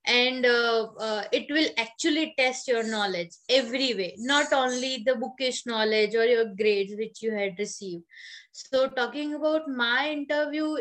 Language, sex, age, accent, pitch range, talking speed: English, female, 20-39, Indian, 220-265 Hz, 155 wpm